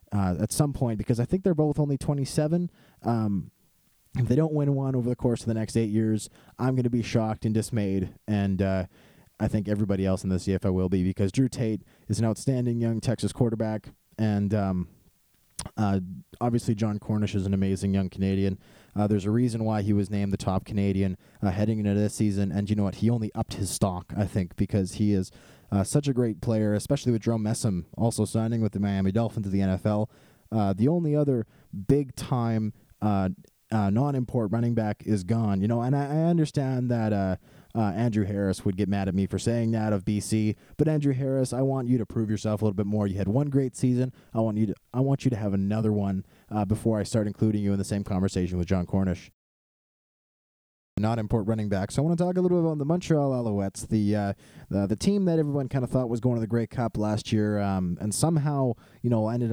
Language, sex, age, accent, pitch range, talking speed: English, male, 20-39, American, 100-120 Hz, 230 wpm